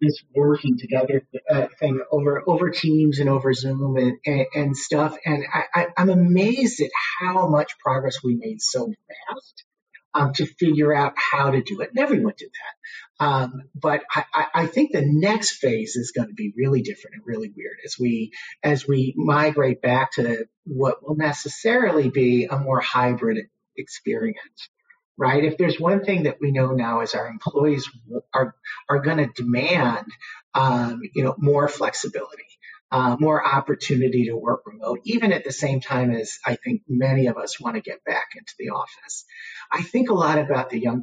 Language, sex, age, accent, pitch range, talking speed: English, male, 40-59, American, 130-205 Hz, 185 wpm